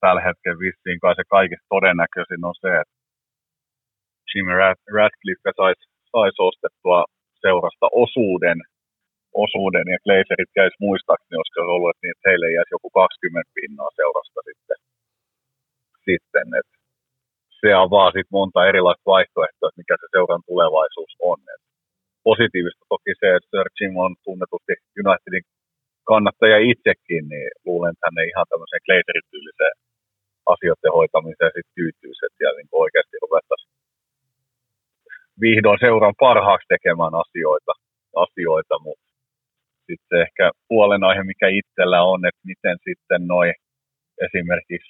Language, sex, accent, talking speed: Finnish, male, native, 120 wpm